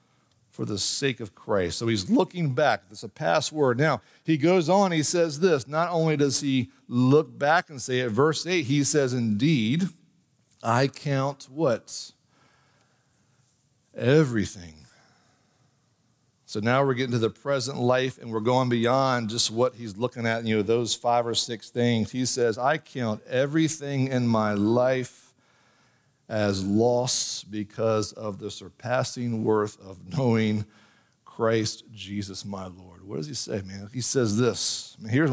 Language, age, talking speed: English, 50-69, 155 wpm